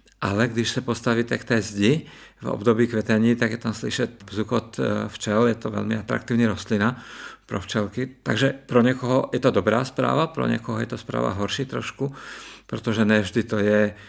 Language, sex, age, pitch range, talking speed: Czech, male, 50-69, 105-125 Hz, 175 wpm